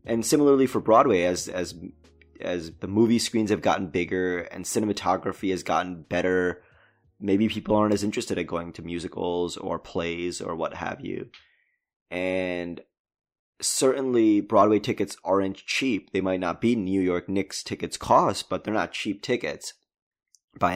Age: 20-39